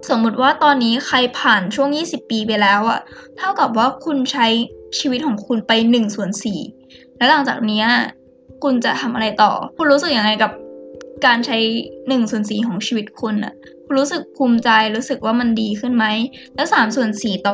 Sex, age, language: female, 10-29, Thai